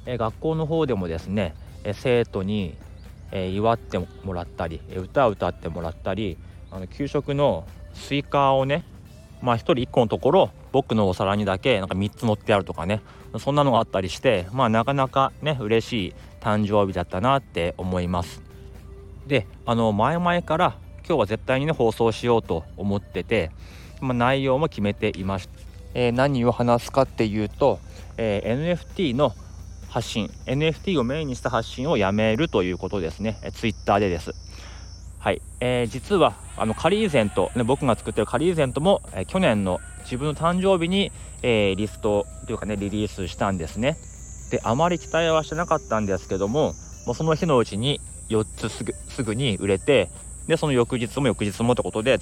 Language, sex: Japanese, male